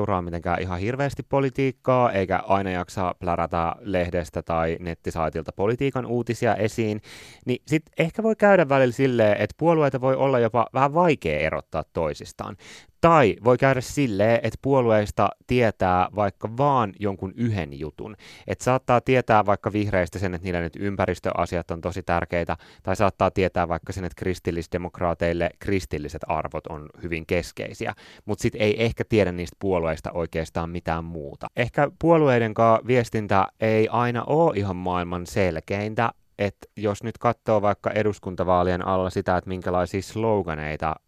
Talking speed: 145 wpm